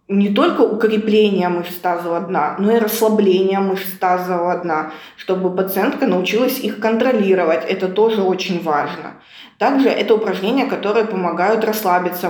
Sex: female